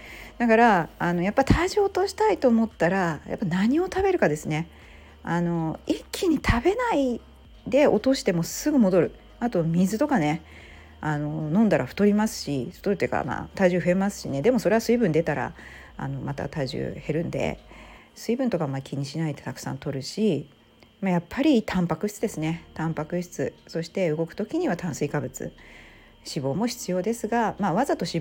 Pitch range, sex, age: 150-210 Hz, female, 40-59